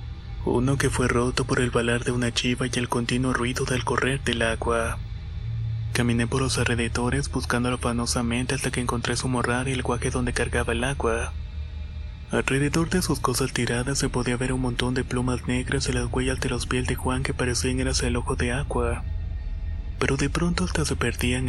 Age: 20-39